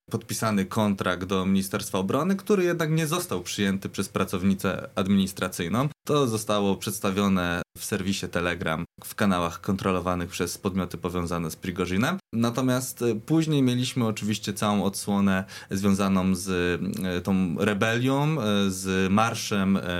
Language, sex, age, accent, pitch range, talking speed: Polish, male, 20-39, native, 90-110 Hz, 115 wpm